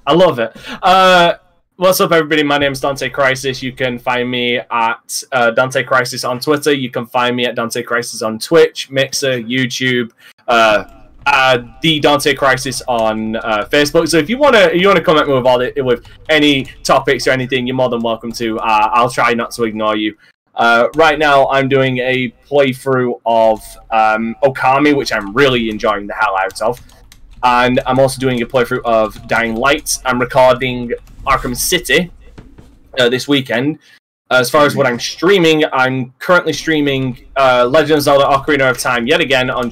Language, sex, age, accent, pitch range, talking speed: English, male, 20-39, British, 115-140 Hz, 185 wpm